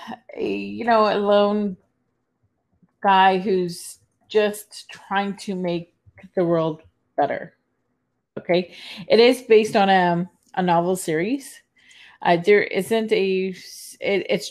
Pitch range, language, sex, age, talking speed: 160-195 Hz, English, female, 30-49, 110 wpm